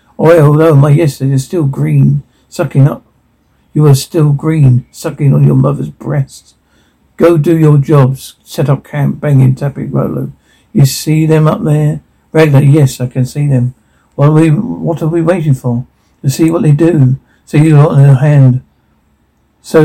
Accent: British